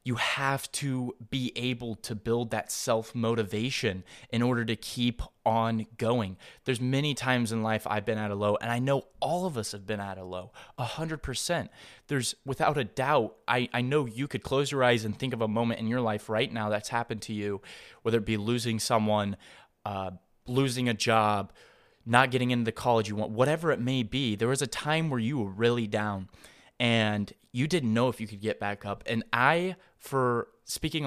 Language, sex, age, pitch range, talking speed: English, male, 20-39, 110-130 Hz, 205 wpm